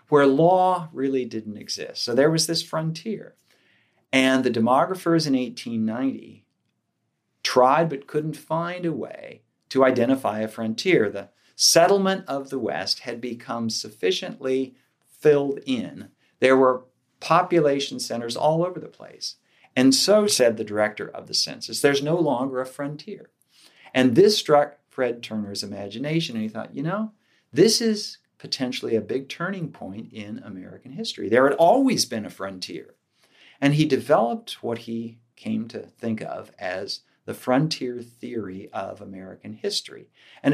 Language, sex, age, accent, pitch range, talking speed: English, male, 50-69, American, 115-165 Hz, 150 wpm